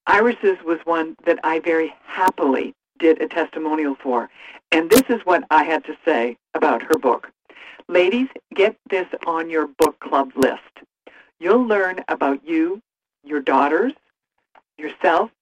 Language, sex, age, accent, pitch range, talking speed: English, female, 60-79, American, 155-210 Hz, 145 wpm